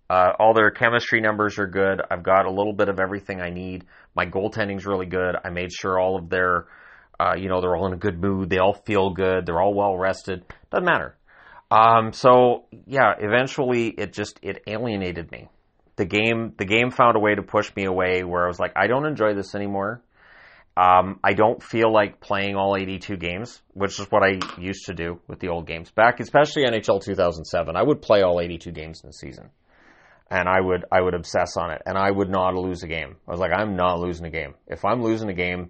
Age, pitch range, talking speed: 30-49, 90-110 Hz, 225 wpm